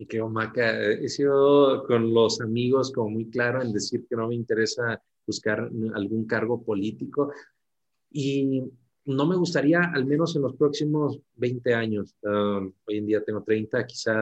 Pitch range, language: 105-115 Hz, Spanish